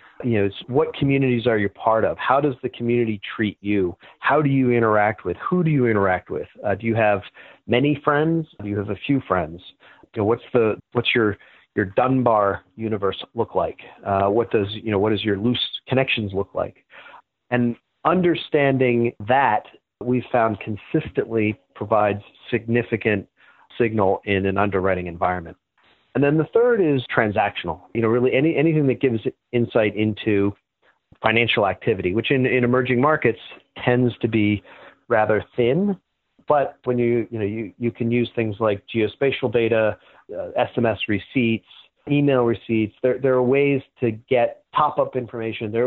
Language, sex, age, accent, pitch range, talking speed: English, male, 40-59, American, 100-125 Hz, 170 wpm